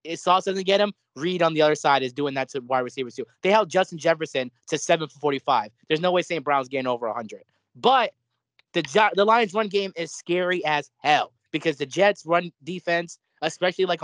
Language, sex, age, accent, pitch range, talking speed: English, male, 20-39, American, 135-180 Hz, 210 wpm